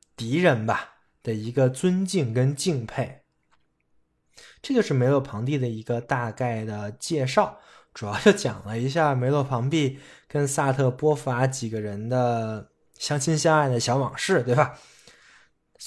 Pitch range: 120-170 Hz